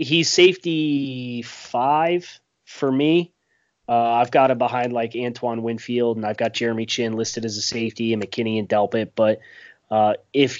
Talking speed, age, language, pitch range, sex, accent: 165 wpm, 30-49, English, 120-135 Hz, male, American